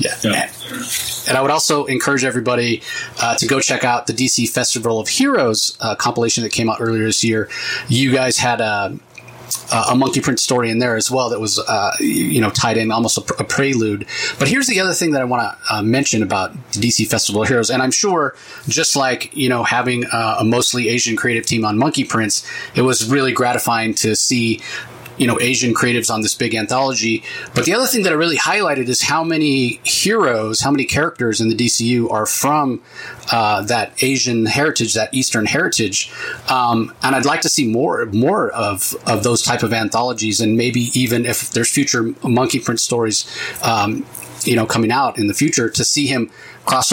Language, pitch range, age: English, 115-130 Hz, 30-49